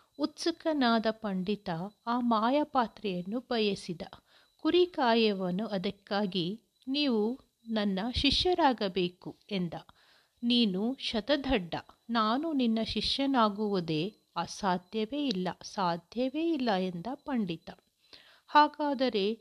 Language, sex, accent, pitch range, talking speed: Kannada, female, native, 200-260 Hz, 75 wpm